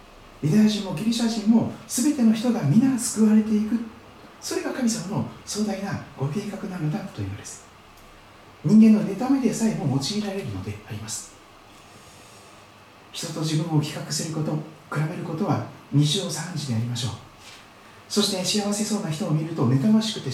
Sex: male